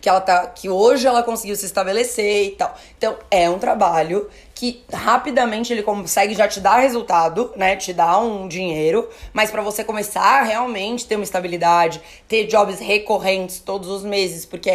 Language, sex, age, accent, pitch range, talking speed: Portuguese, female, 20-39, Brazilian, 185-245 Hz, 185 wpm